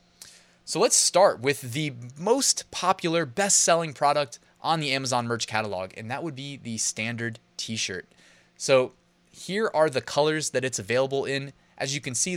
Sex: male